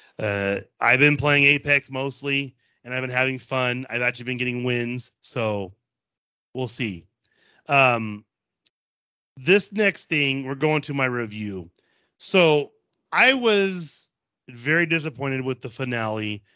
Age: 30-49